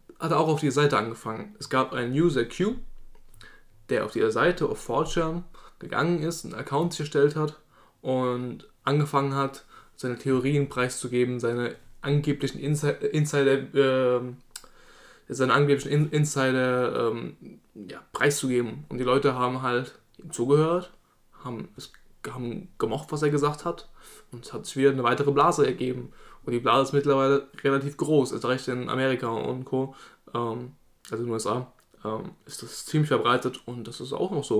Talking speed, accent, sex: 165 wpm, German, male